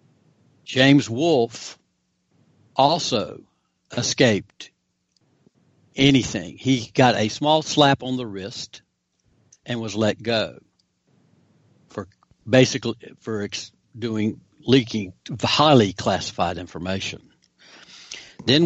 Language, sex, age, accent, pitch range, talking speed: English, male, 60-79, American, 105-135 Hz, 85 wpm